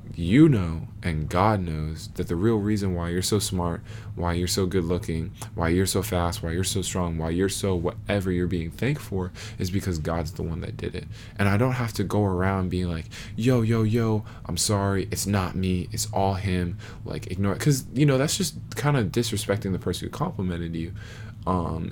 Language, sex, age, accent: English, male, 20-39, American